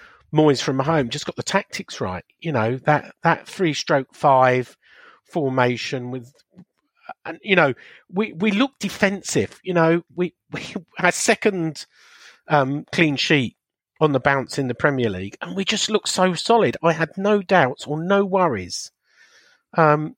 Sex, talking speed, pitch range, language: male, 160 wpm, 130-185 Hz, English